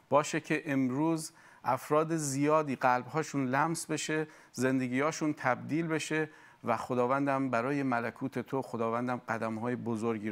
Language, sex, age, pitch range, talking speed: Persian, male, 50-69, 115-155 Hz, 115 wpm